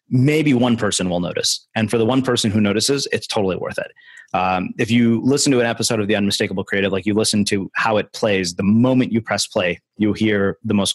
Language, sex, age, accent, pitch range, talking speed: English, male, 30-49, American, 95-115 Hz, 235 wpm